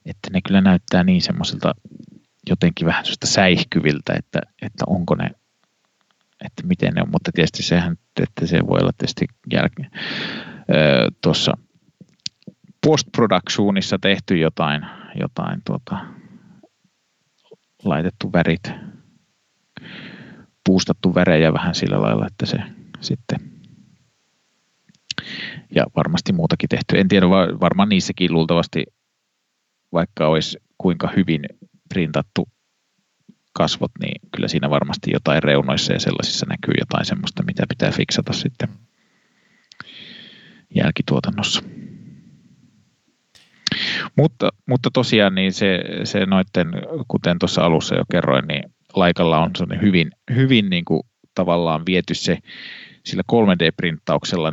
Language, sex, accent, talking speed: Finnish, male, native, 105 wpm